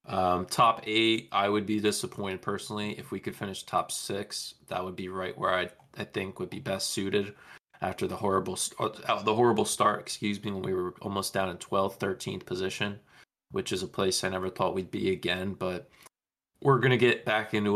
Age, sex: 20-39, male